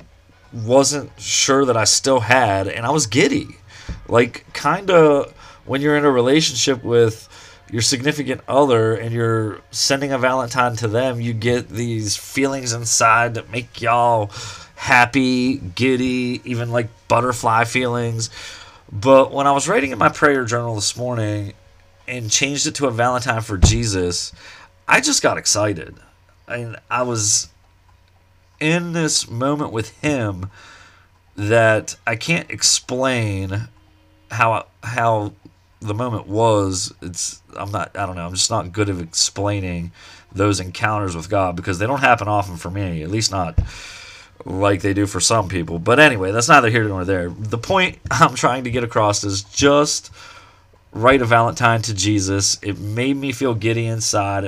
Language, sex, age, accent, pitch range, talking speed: English, male, 30-49, American, 100-125 Hz, 155 wpm